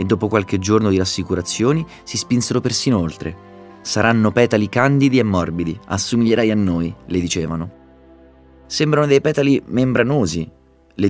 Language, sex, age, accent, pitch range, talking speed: Italian, male, 30-49, native, 85-115 Hz, 135 wpm